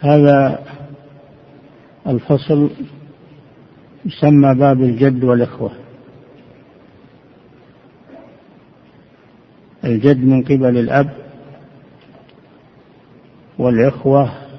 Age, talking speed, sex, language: 60-79, 45 wpm, male, Arabic